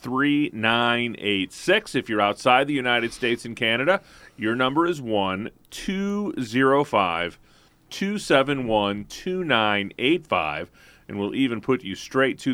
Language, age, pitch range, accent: English, 30-49, 105-140 Hz, American